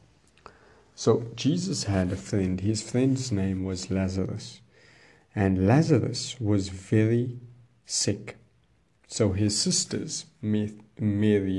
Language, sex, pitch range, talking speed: English, male, 100-120 Hz, 100 wpm